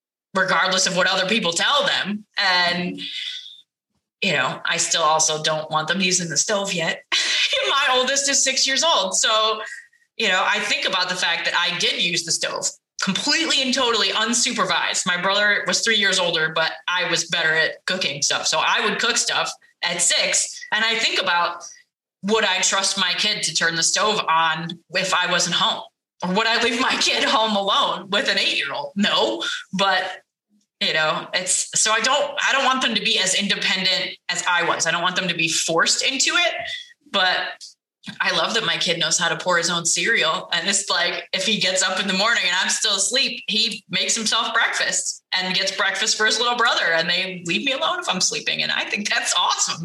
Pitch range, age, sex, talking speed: 175-230 Hz, 20-39, female, 210 wpm